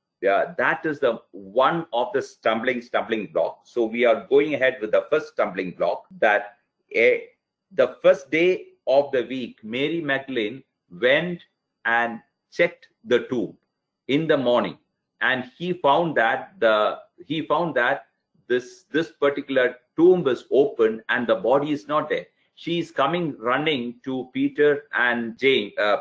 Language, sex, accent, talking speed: English, male, Indian, 155 wpm